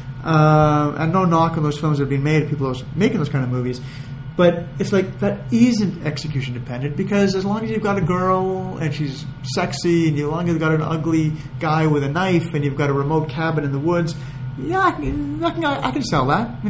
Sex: male